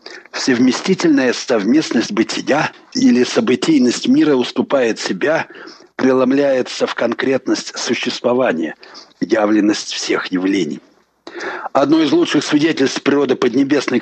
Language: Russian